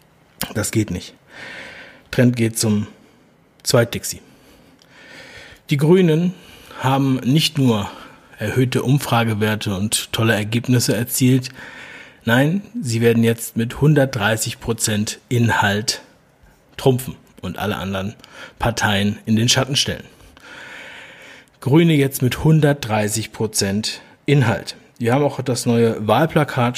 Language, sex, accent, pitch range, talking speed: German, male, German, 105-130 Hz, 105 wpm